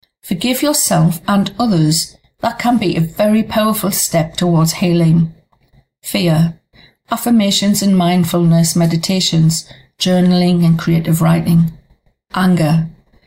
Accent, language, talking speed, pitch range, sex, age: British, English, 105 wpm, 165-200 Hz, female, 40-59